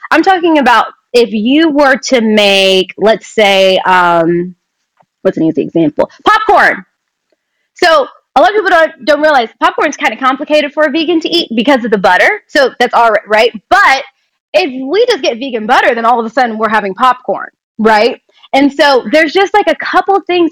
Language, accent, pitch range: English, American, 225-315 Hz